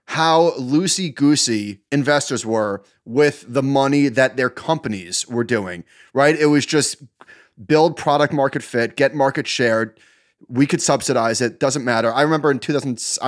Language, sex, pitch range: English, male, 125-160 Hz